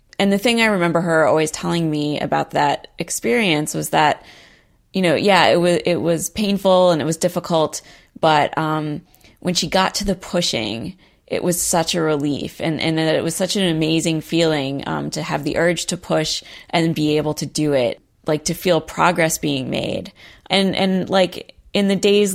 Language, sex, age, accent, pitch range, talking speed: English, female, 20-39, American, 155-180 Hz, 195 wpm